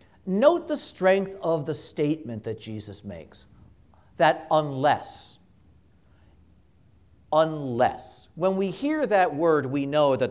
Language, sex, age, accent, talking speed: English, male, 50-69, American, 115 wpm